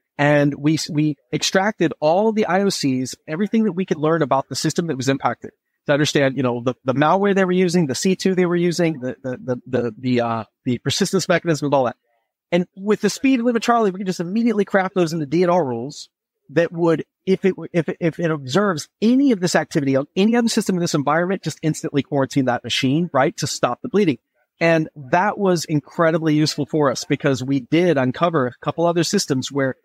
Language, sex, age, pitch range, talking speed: English, male, 30-49, 140-185 Hz, 215 wpm